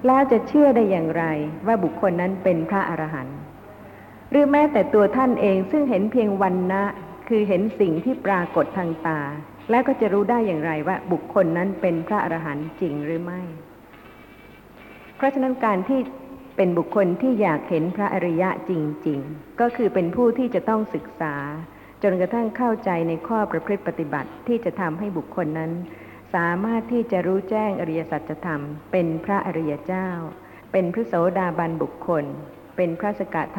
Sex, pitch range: female, 165-215 Hz